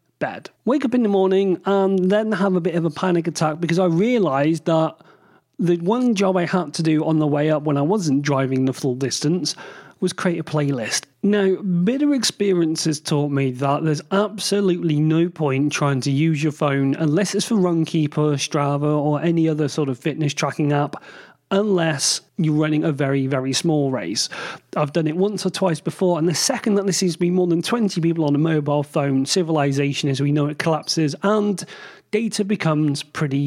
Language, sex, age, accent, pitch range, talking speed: English, male, 30-49, British, 145-190 Hz, 195 wpm